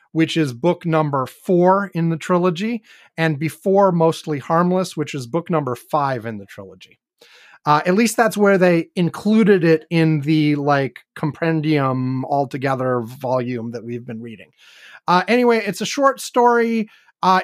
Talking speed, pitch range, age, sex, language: 155 wpm, 140-185 Hz, 30-49, male, English